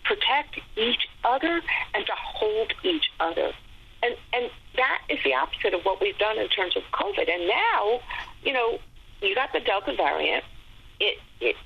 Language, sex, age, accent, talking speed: English, female, 50-69, American, 170 wpm